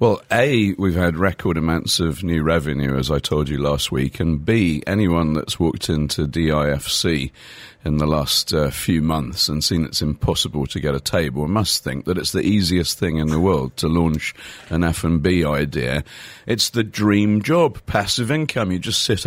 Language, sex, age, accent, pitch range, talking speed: English, male, 40-59, British, 75-95 Hz, 185 wpm